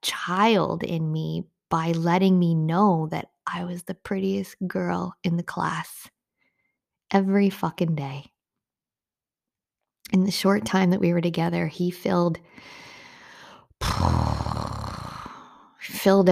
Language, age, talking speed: English, 20-39, 110 wpm